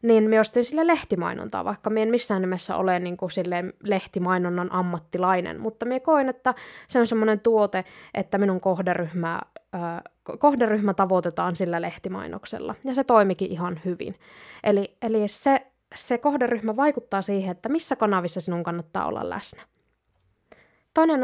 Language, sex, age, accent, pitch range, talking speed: Finnish, female, 20-39, native, 185-235 Hz, 130 wpm